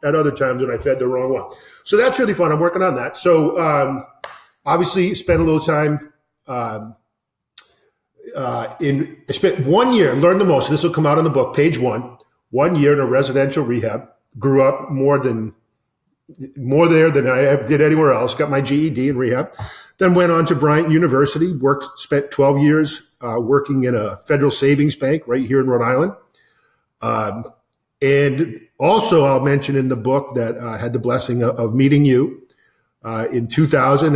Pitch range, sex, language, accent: 125-155 Hz, male, English, American